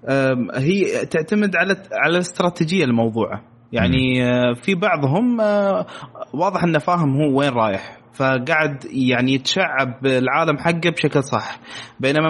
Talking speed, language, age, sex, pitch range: 105 wpm, Arabic, 20-39, male, 125-160 Hz